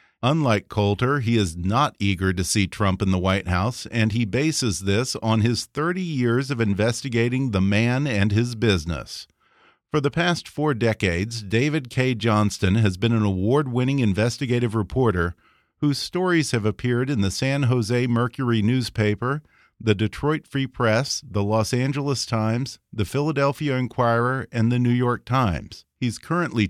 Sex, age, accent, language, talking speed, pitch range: male, 50-69, American, English, 155 wpm, 110-130 Hz